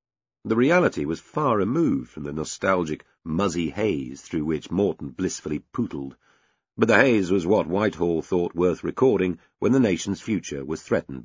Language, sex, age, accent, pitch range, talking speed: English, male, 50-69, British, 80-120 Hz, 160 wpm